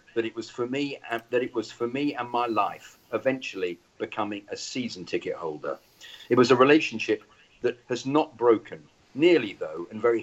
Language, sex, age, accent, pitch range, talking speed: English, male, 50-69, British, 110-130 Hz, 190 wpm